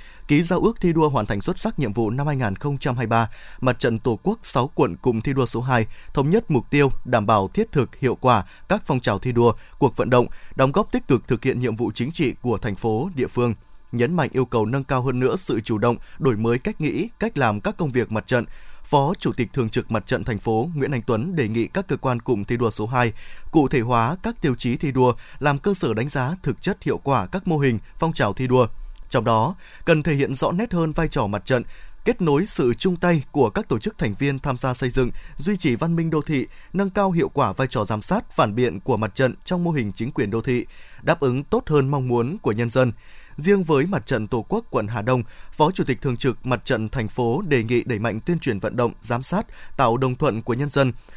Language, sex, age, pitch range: Vietnamese, male, 20-39, 115-150 Hz